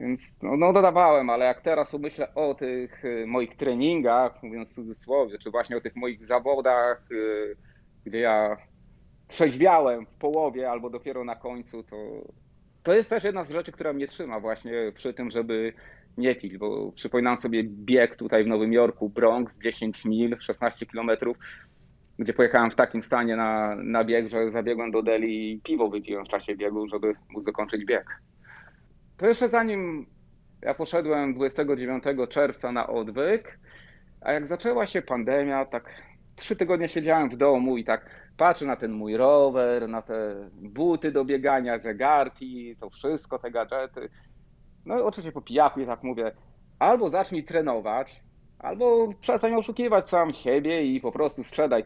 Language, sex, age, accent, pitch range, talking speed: Polish, male, 30-49, native, 110-150 Hz, 160 wpm